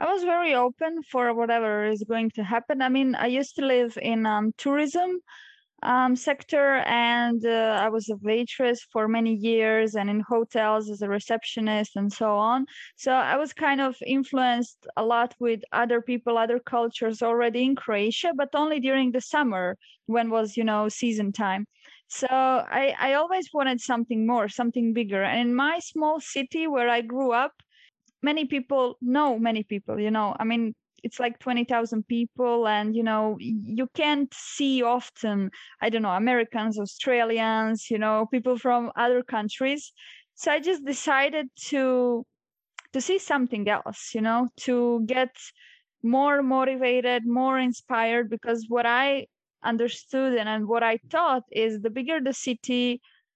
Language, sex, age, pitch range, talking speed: English, female, 20-39, 225-265 Hz, 165 wpm